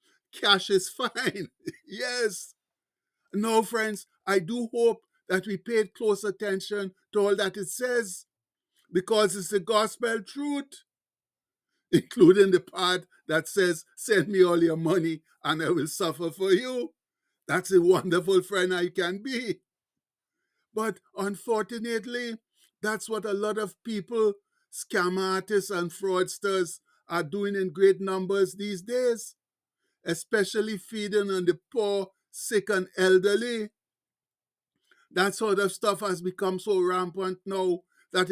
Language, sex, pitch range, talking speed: English, male, 180-220 Hz, 130 wpm